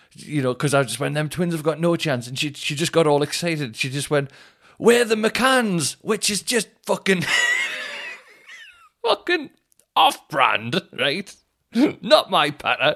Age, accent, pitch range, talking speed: 30-49, British, 105-150 Hz, 165 wpm